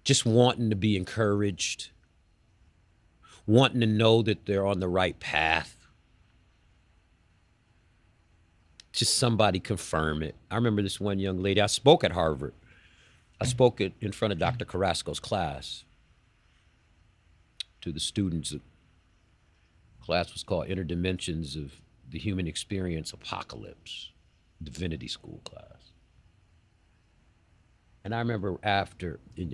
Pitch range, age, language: 85-105 Hz, 50-69, English